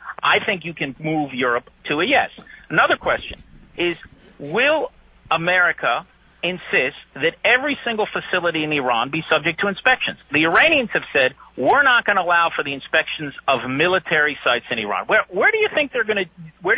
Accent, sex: American, male